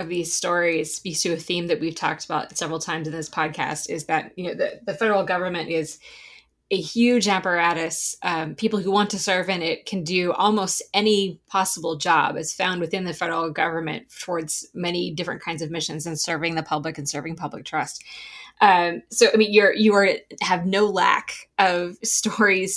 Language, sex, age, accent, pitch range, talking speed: English, female, 20-39, American, 165-195 Hz, 195 wpm